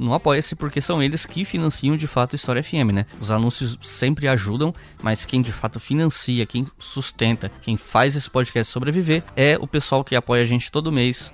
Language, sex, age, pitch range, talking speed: Portuguese, male, 10-29, 120-160 Hz, 200 wpm